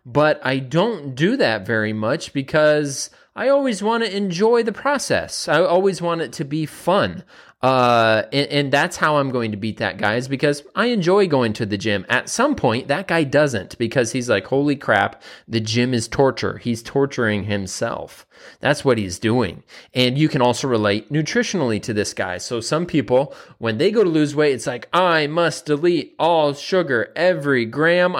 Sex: male